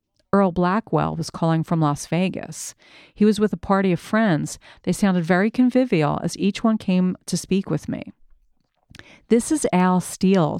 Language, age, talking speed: English, 40-59, 170 wpm